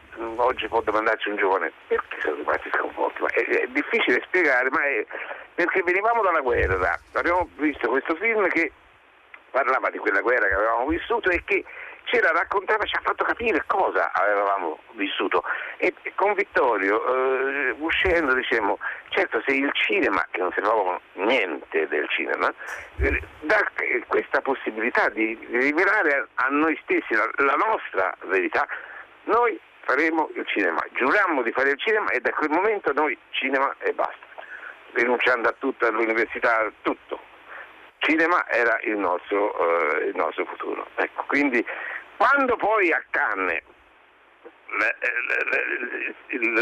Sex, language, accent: male, Italian, native